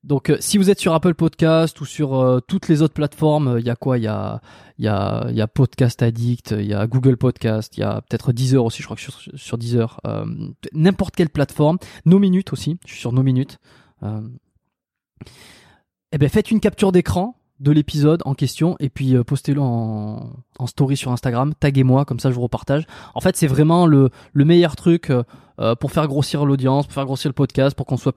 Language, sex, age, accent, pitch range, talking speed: French, male, 20-39, French, 120-145 Hz, 225 wpm